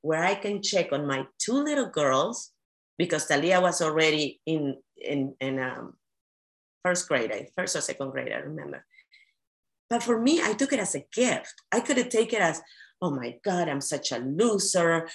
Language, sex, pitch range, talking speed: English, female, 140-195 Hz, 185 wpm